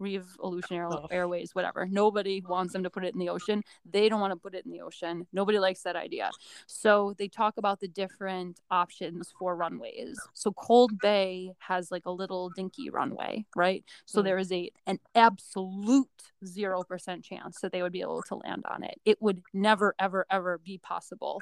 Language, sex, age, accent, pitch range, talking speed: English, female, 20-39, American, 185-210 Hz, 190 wpm